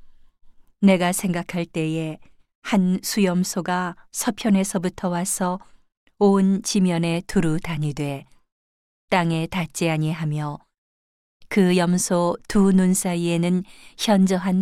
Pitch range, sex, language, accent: 160-190 Hz, female, Korean, native